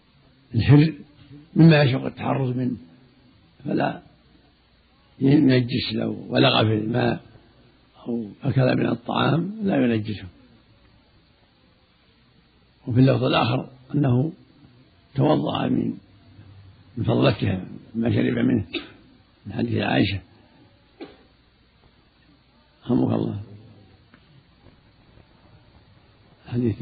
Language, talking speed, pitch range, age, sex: Arabic, 75 wpm, 115-140 Hz, 70-89, male